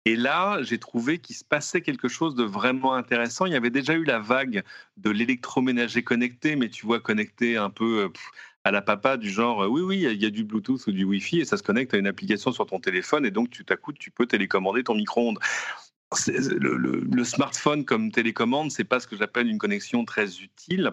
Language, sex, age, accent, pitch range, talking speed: French, male, 40-59, French, 105-135 Hz, 230 wpm